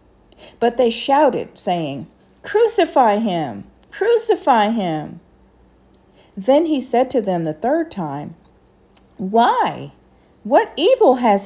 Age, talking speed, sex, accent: 50-69, 105 wpm, female, American